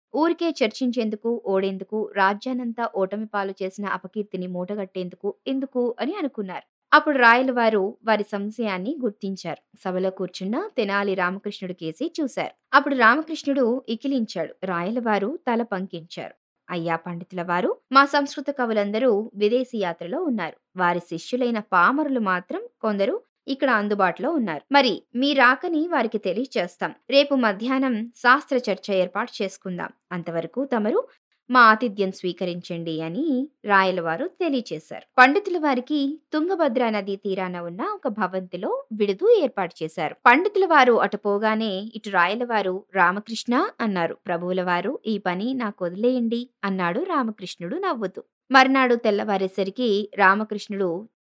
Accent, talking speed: native, 110 wpm